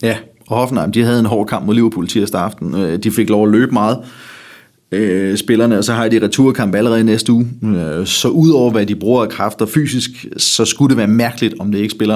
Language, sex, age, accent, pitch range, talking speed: Danish, male, 30-49, native, 105-120 Hz, 215 wpm